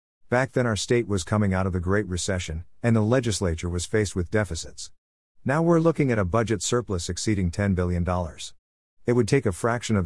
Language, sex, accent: English, male, American